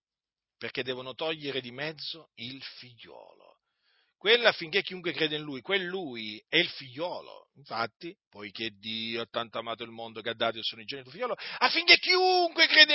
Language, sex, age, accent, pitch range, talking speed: Italian, male, 40-59, native, 135-200 Hz, 170 wpm